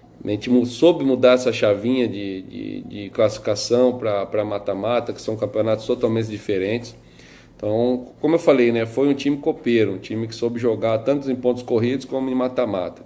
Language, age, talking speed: Portuguese, 20-39, 175 wpm